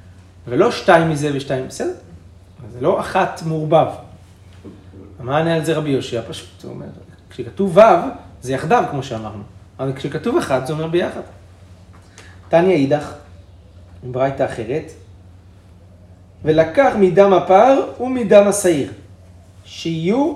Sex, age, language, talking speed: male, 30-49, Hebrew, 120 wpm